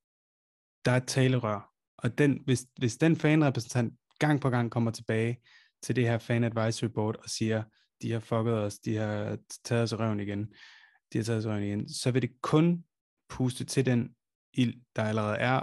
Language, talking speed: Danish, 190 wpm